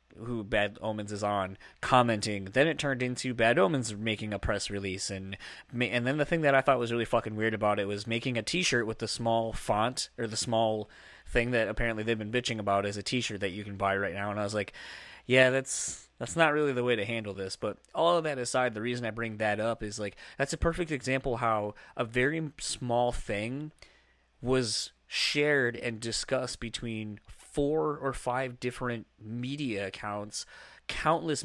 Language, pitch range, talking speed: English, 105-125 Hz, 200 wpm